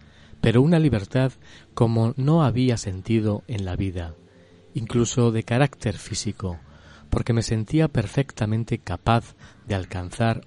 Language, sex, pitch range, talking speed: Spanish, male, 95-120 Hz, 120 wpm